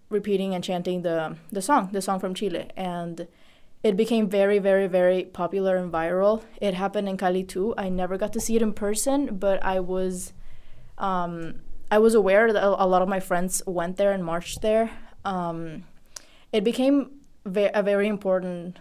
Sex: female